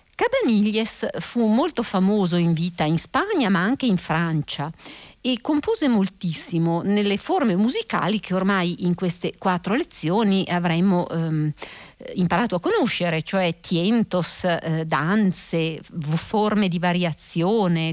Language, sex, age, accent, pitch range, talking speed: Italian, female, 50-69, native, 170-230 Hz, 120 wpm